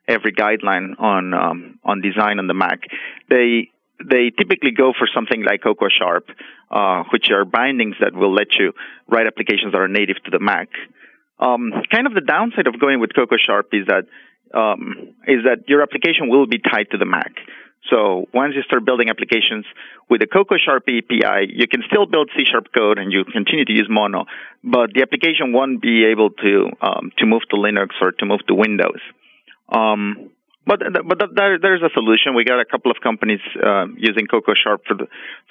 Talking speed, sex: 200 wpm, male